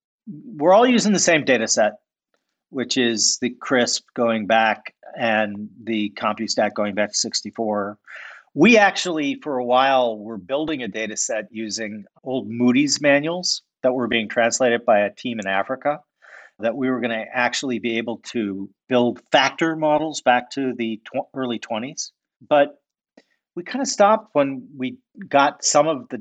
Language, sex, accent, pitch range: English, male, American, 115-150 Hz